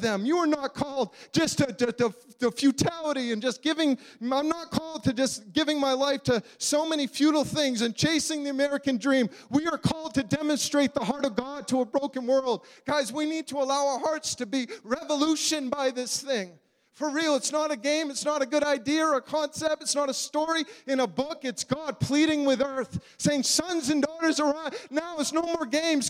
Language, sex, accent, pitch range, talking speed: English, male, American, 255-305 Hz, 210 wpm